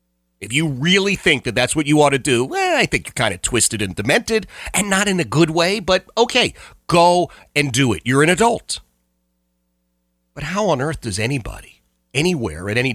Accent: American